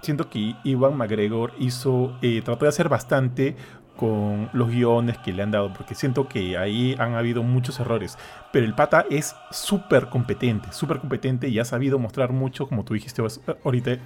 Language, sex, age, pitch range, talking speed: Spanish, male, 30-49, 115-140 Hz, 180 wpm